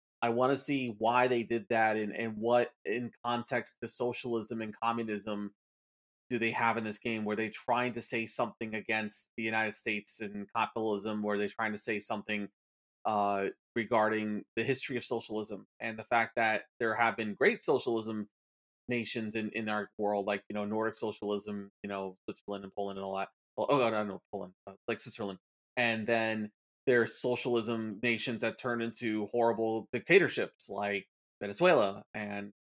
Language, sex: English, male